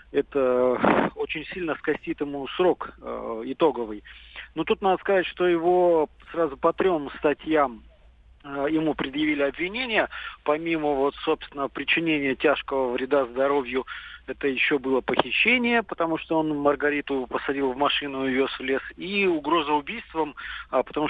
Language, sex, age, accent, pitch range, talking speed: Russian, male, 40-59, native, 140-175 Hz, 140 wpm